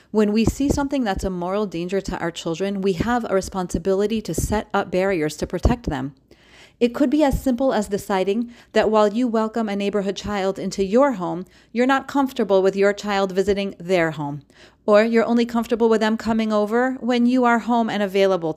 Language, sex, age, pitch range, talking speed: English, female, 30-49, 180-240 Hz, 200 wpm